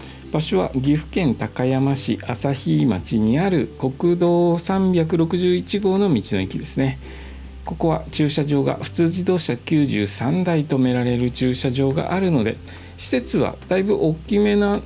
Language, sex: Japanese, male